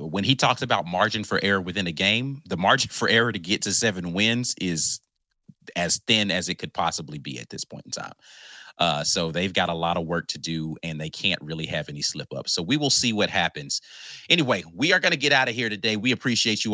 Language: English